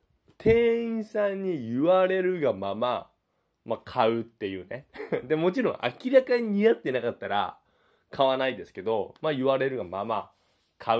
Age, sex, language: 20-39, male, Japanese